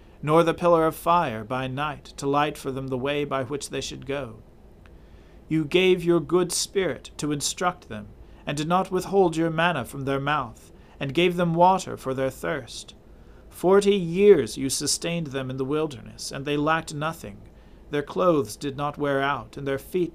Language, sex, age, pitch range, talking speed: English, male, 40-59, 125-160 Hz, 190 wpm